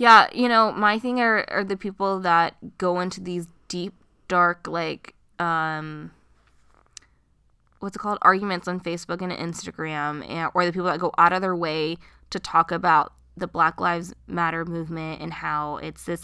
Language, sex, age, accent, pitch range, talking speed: English, female, 20-39, American, 165-210 Hz, 175 wpm